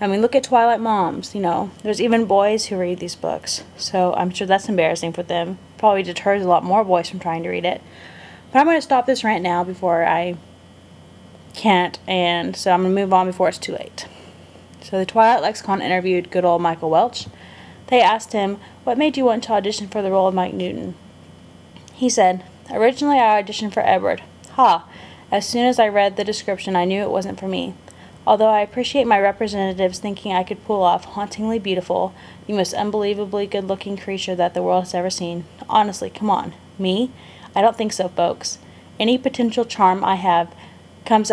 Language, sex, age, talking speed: English, female, 10-29, 200 wpm